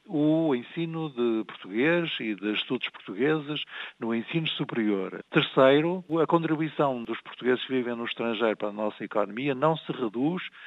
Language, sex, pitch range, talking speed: Portuguese, male, 110-155 Hz, 150 wpm